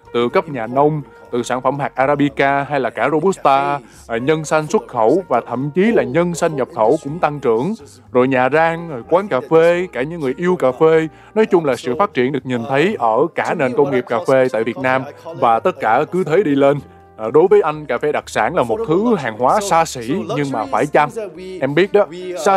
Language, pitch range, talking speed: Vietnamese, 130-180 Hz, 235 wpm